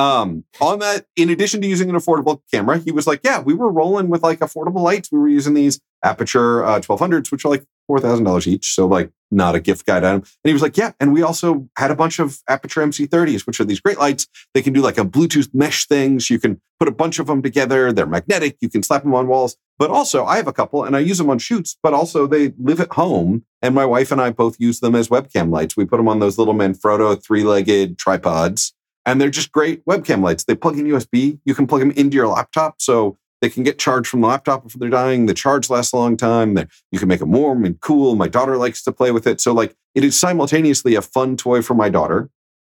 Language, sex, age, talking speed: English, male, 40-59, 255 wpm